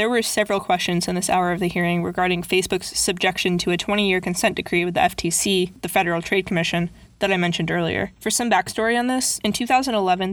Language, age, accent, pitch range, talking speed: English, 20-39, American, 175-200 Hz, 210 wpm